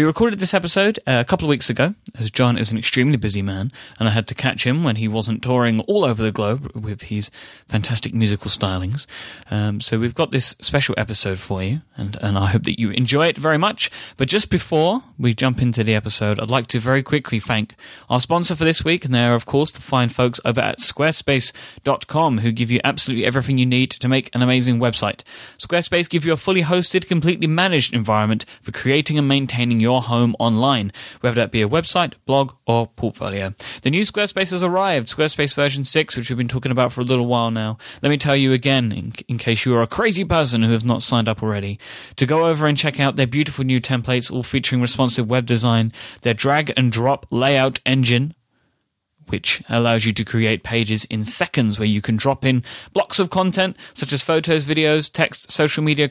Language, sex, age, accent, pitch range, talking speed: English, male, 30-49, British, 115-150 Hz, 215 wpm